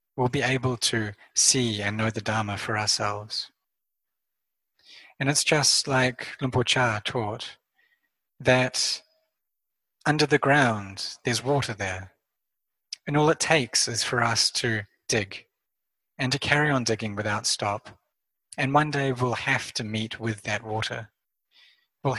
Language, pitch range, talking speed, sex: English, 110-135 Hz, 140 wpm, male